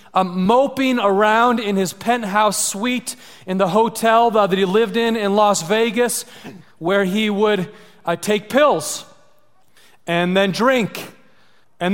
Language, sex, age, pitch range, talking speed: English, male, 30-49, 190-235 Hz, 135 wpm